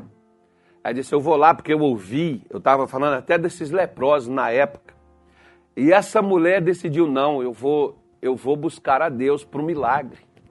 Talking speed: 175 wpm